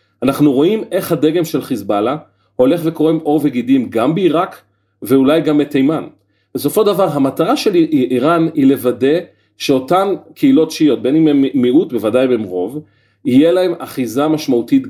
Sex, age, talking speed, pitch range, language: male, 40-59, 140 wpm, 125-160 Hz, Hebrew